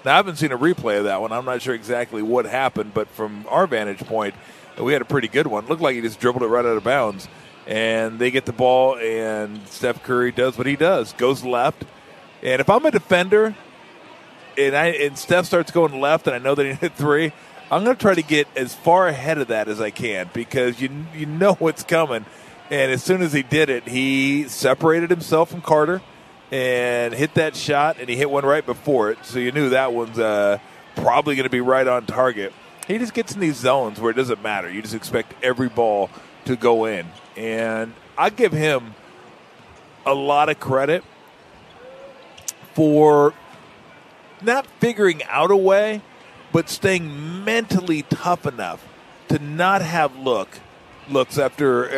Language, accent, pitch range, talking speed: English, American, 125-165 Hz, 195 wpm